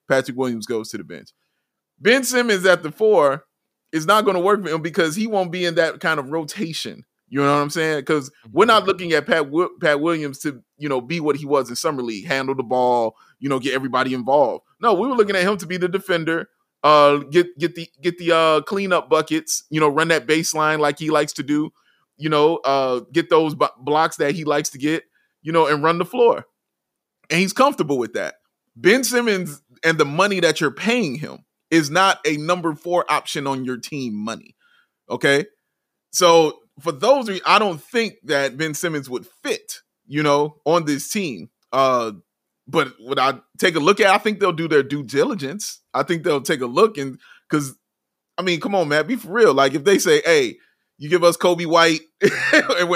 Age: 20-39